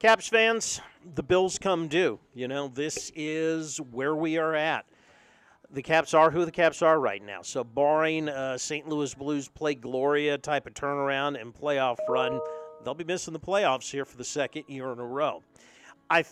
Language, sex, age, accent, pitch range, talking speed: English, male, 40-59, American, 135-160 Hz, 190 wpm